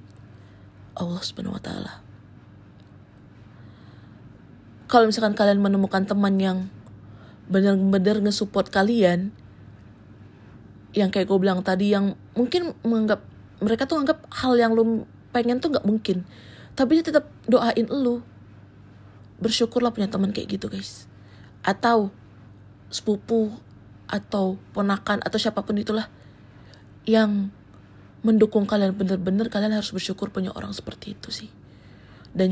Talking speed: 115 wpm